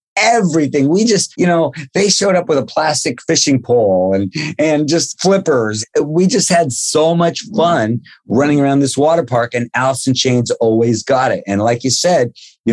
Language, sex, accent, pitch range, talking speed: English, male, American, 115-155 Hz, 185 wpm